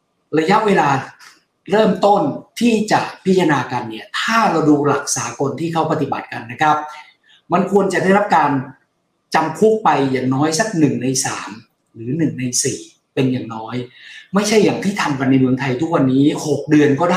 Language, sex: Thai, male